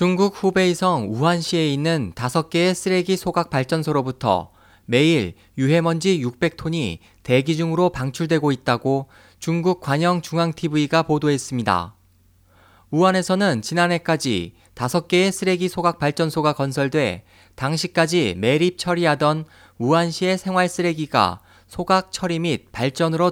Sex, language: male, Korean